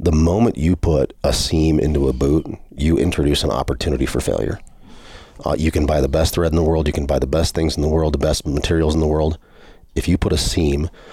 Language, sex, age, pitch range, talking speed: English, male, 30-49, 75-85 Hz, 245 wpm